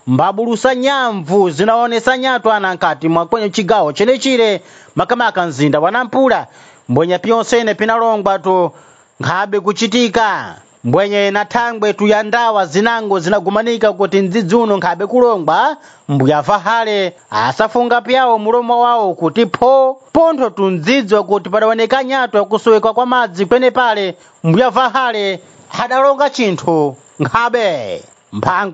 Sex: male